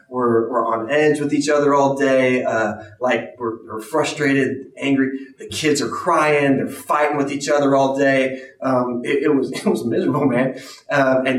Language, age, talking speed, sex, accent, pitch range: English, 20-39, 190 wpm, male, American, 115-140 Hz